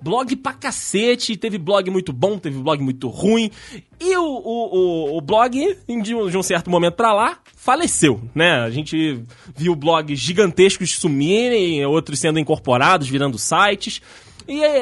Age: 20-39